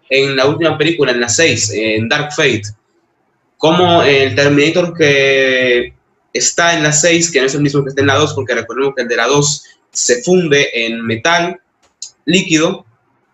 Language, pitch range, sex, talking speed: Spanish, 120-160 Hz, male, 180 wpm